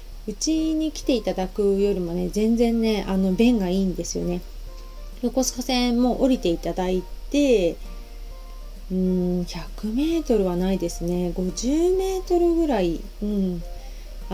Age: 30-49